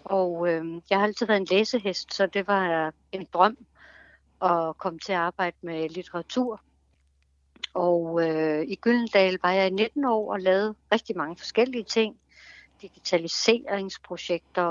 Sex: female